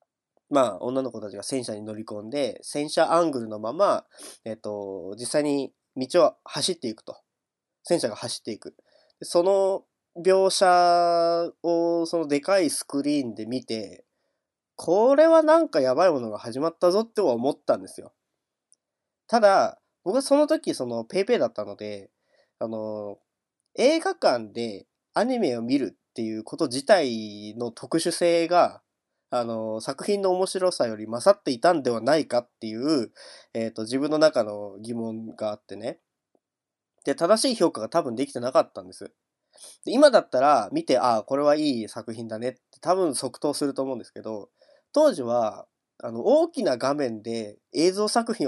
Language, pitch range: Japanese, 115-185 Hz